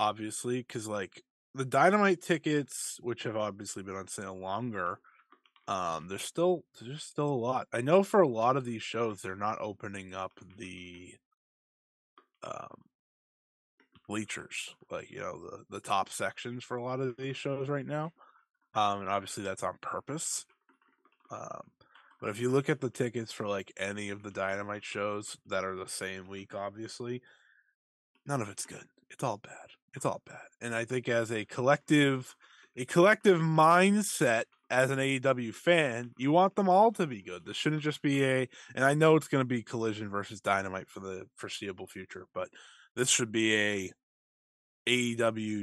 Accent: American